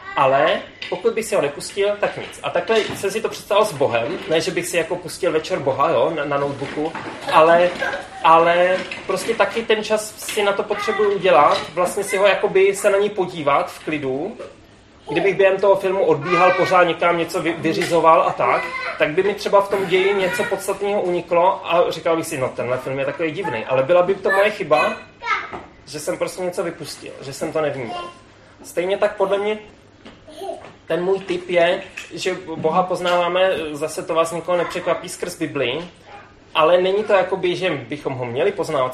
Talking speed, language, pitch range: 190 wpm, Czech, 160-200 Hz